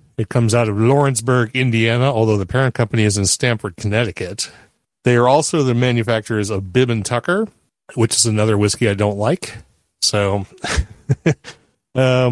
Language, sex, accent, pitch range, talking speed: English, male, American, 110-130 Hz, 155 wpm